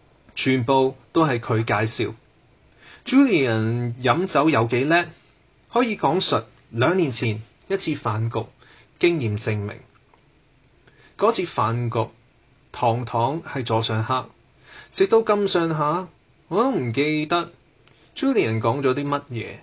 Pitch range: 115-160 Hz